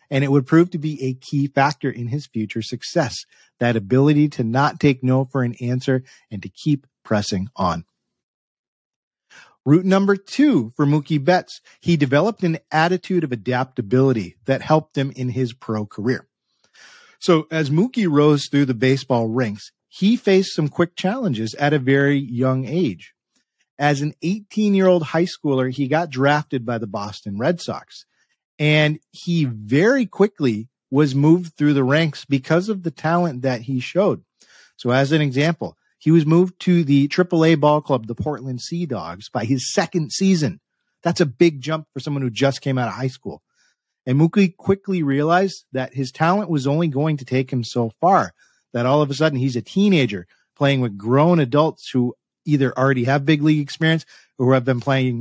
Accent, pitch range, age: American, 130-165 Hz, 40-59